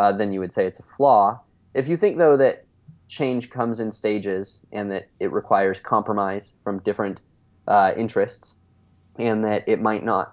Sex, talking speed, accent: male, 180 wpm, American